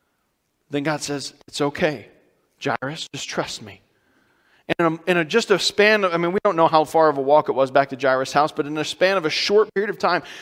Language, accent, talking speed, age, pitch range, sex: English, American, 255 wpm, 40-59, 155-200 Hz, male